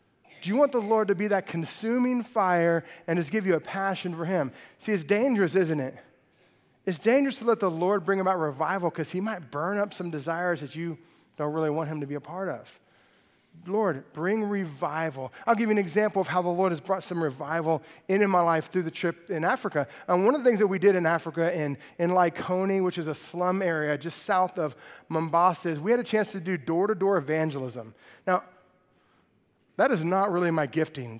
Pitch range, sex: 160-210 Hz, male